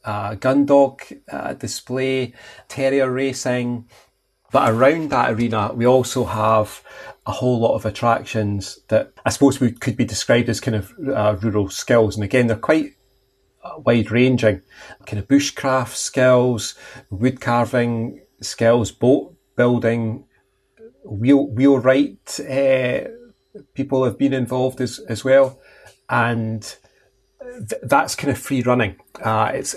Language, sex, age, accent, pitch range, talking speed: English, male, 30-49, British, 110-130 Hz, 135 wpm